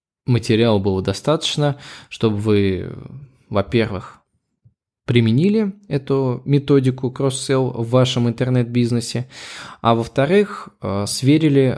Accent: native